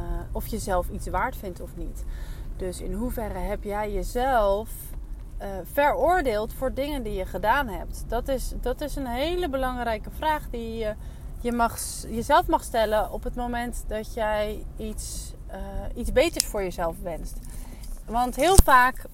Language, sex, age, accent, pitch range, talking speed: Dutch, female, 30-49, Dutch, 215-275 Hz, 165 wpm